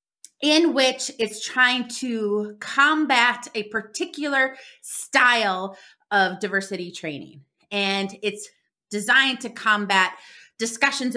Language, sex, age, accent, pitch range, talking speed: English, female, 30-49, American, 180-235 Hz, 95 wpm